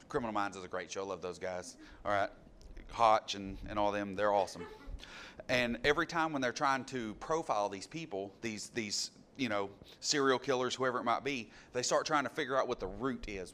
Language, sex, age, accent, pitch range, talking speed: English, male, 30-49, American, 105-135 Hz, 215 wpm